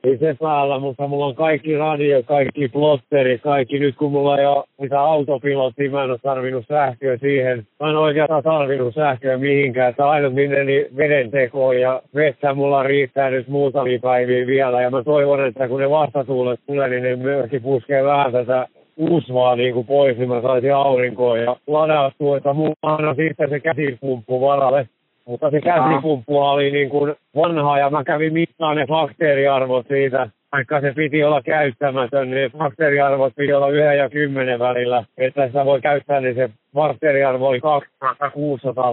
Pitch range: 130-145 Hz